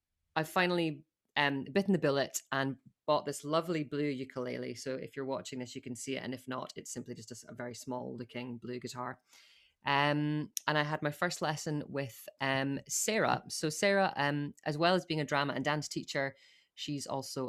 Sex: female